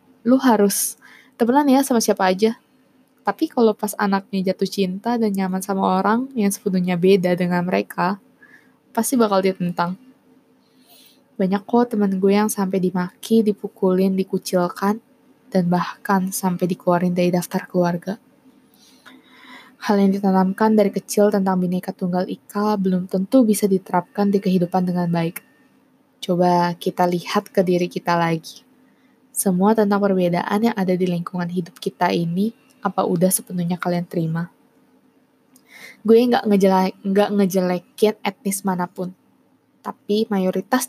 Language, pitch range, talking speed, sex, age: Indonesian, 185-225 Hz, 130 wpm, female, 20-39